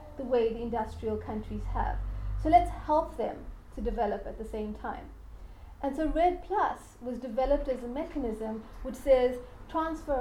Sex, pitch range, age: female, 235-280 Hz, 40-59